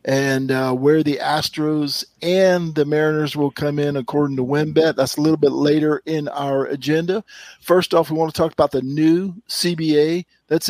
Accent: American